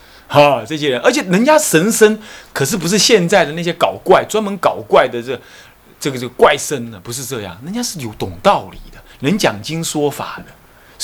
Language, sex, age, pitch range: Chinese, male, 30-49, 120-170 Hz